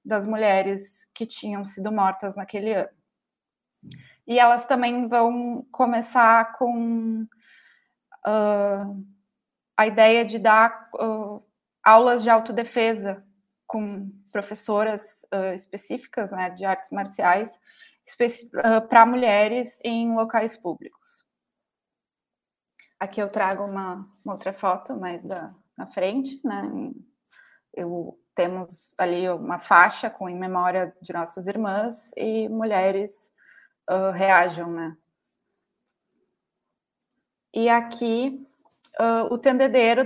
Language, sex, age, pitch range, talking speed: Portuguese, female, 20-39, 200-240 Hz, 95 wpm